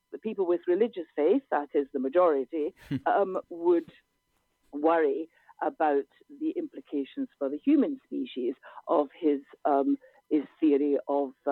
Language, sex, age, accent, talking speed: English, female, 50-69, British, 130 wpm